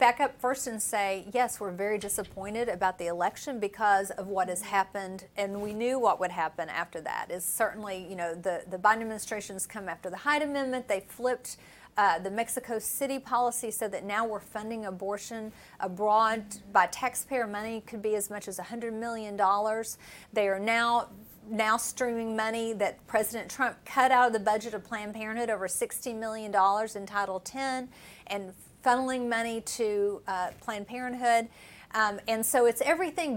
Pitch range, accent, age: 200-245 Hz, American, 40-59